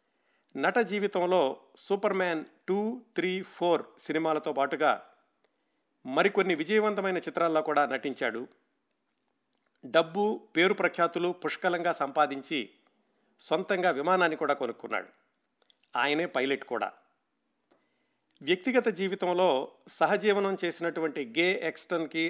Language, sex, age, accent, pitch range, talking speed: Telugu, male, 50-69, native, 145-185 Hz, 85 wpm